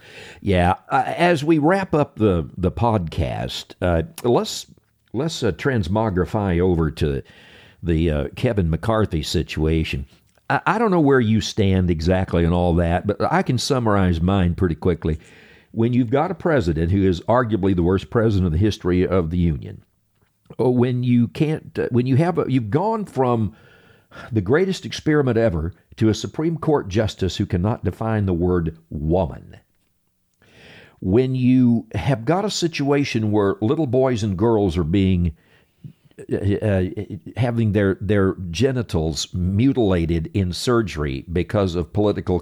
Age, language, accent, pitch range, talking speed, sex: 50-69, English, American, 90-125 Hz, 155 wpm, male